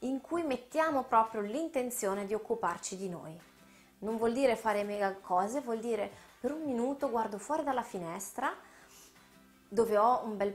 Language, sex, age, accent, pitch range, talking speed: Italian, female, 20-39, native, 185-240 Hz, 160 wpm